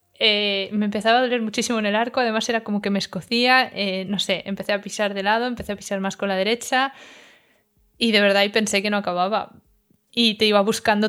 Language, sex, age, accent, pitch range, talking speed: Spanish, female, 20-39, Spanish, 200-240 Hz, 225 wpm